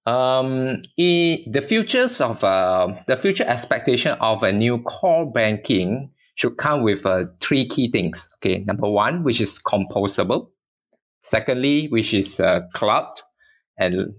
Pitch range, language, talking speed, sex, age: 105-140 Hz, English, 140 wpm, male, 20-39